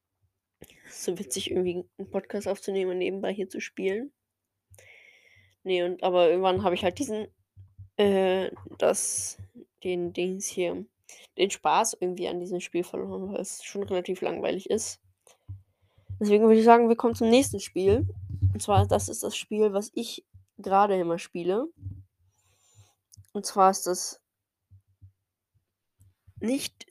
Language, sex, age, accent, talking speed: German, female, 20-39, German, 140 wpm